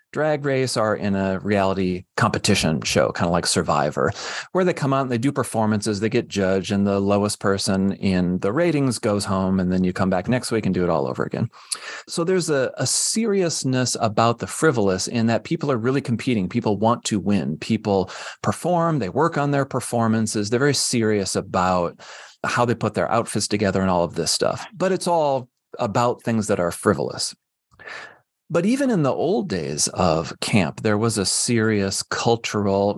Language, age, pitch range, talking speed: English, 30-49, 95-125 Hz, 195 wpm